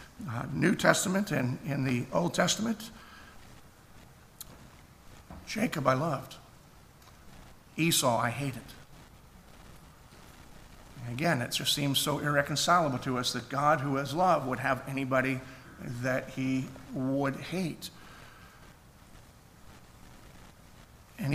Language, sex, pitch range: English, male, 125-155 Hz